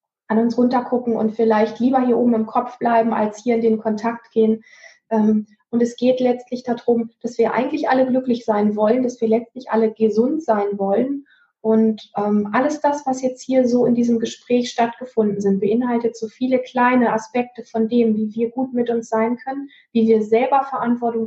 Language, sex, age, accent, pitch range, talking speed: German, female, 20-39, German, 220-250 Hz, 185 wpm